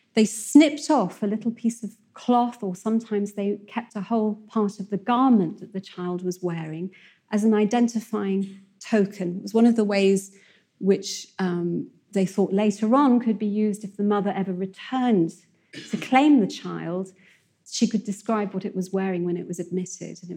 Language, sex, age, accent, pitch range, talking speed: English, female, 40-59, British, 185-220 Hz, 190 wpm